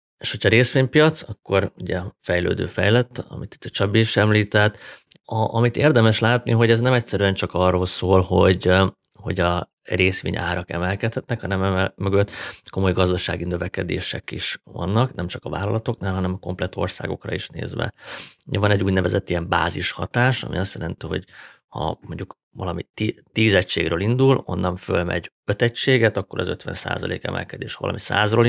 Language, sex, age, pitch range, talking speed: Hungarian, male, 30-49, 90-115 Hz, 155 wpm